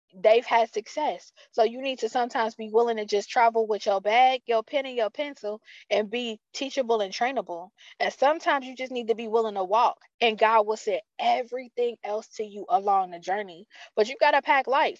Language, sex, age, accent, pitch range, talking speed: English, female, 20-39, American, 225-295 Hz, 210 wpm